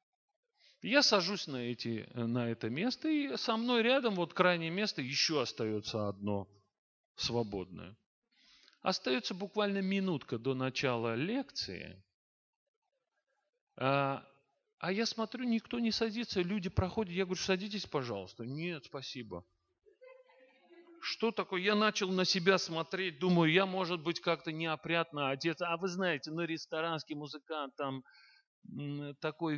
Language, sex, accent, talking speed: Russian, male, native, 125 wpm